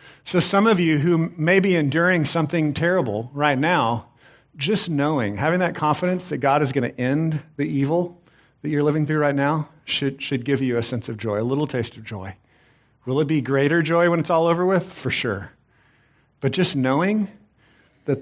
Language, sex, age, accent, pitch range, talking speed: English, male, 50-69, American, 135-175 Hz, 200 wpm